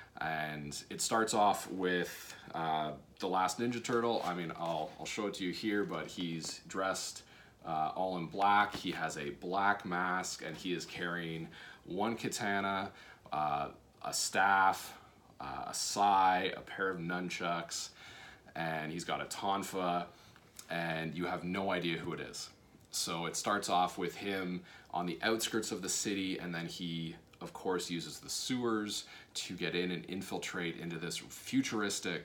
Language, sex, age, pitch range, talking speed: English, male, 30-49, 85-95 Hz, 165 wpm